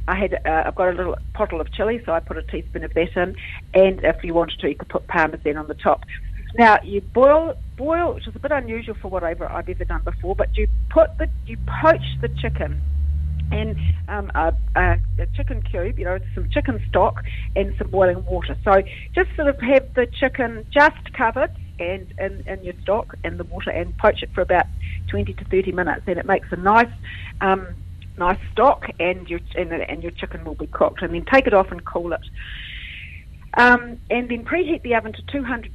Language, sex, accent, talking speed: English, female, Australian, 215 wpm